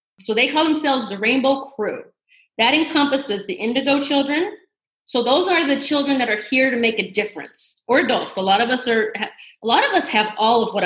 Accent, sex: American, female